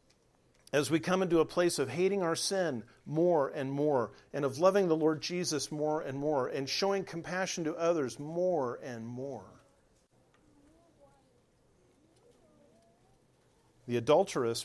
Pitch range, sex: 135-170 Hz, male